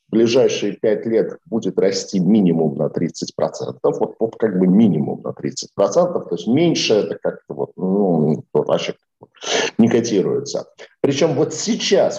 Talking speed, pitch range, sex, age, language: 145 wpm, 130-190 Hz, male, 50-69, Russian